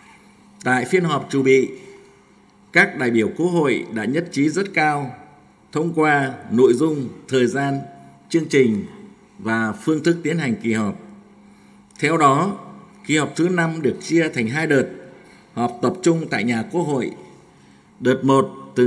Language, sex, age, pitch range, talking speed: Vietnamese, male, 50-69, 125-180 Hz, 160 wpm